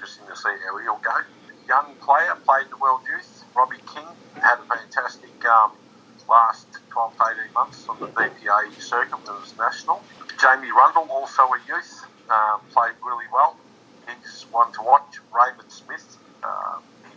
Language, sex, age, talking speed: English, male, 50-69, 155 wpm